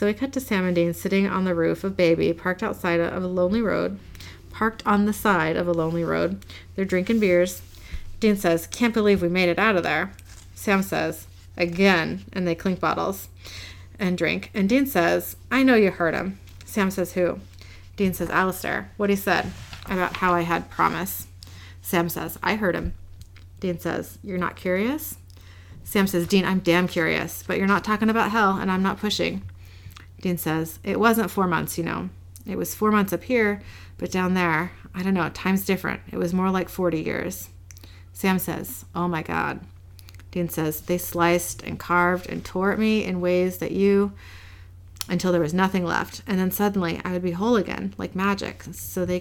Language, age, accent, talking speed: English, 30-49, American, 195 wpm